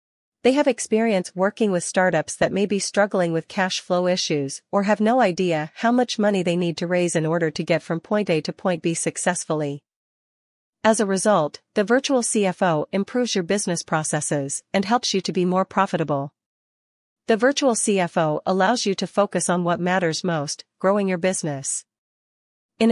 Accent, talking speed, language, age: American, 180 wpm, English, 40-59